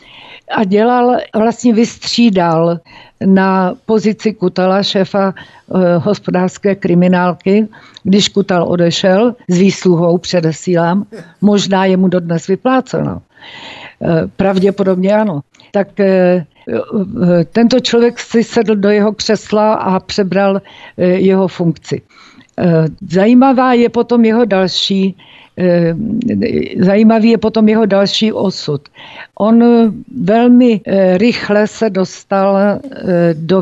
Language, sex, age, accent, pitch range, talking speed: Czech, female, 60-79, native, 185-220 Hz, 95 wpm